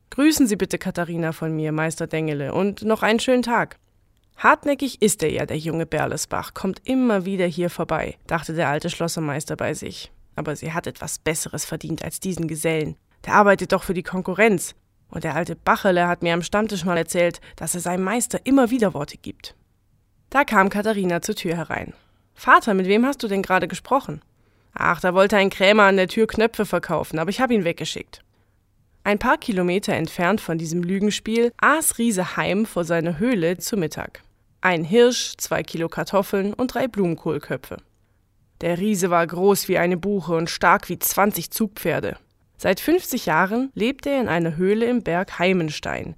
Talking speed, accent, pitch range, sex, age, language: 180 wpm, German, 165-215 Hz, female, 20-39, German